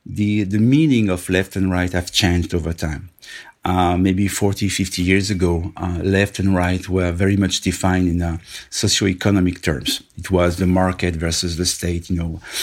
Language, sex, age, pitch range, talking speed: English, male, 50-69, 85-100 Hz, 185 wpm